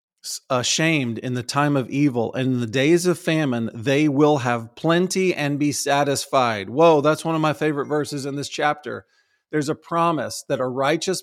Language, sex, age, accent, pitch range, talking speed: English, male, 40-59, American, 125-150 Hz, 185 wpm